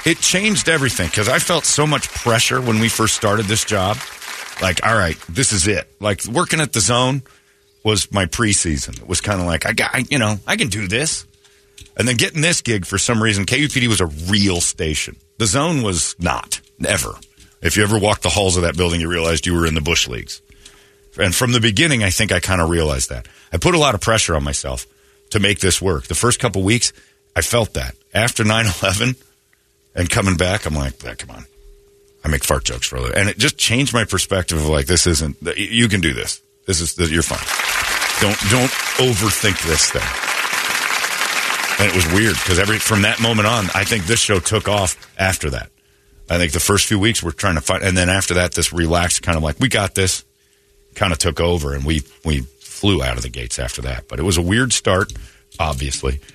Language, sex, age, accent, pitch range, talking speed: English, male, 40-59, American, 80-115 Hz, 225 wpm